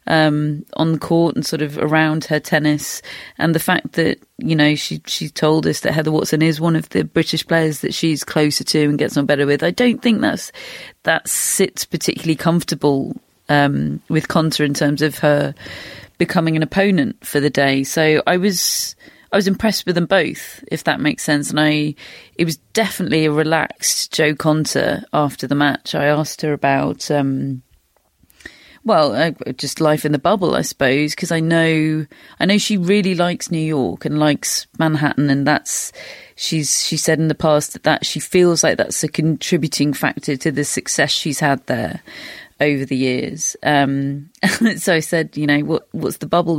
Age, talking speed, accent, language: 30-49, 190 wpm, British, English